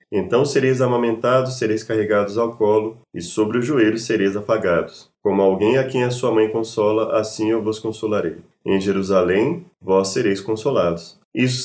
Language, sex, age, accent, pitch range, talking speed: Portuguese, male, 20-39, Brazilian, 105-125 Hz, 160 wpm